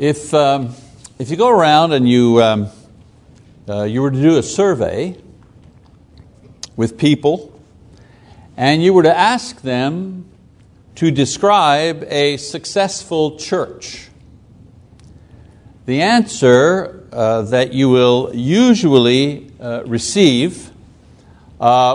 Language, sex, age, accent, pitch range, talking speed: English, male, 60-79, American, 125-170 Hz, 105 wpm